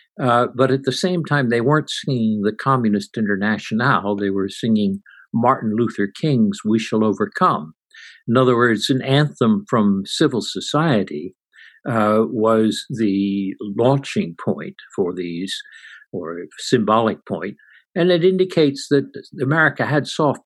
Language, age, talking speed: English, 60-79, 135 wpm